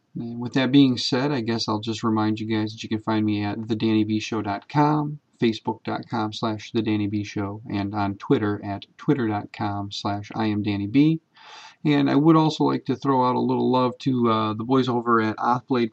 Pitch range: 105-125 Hz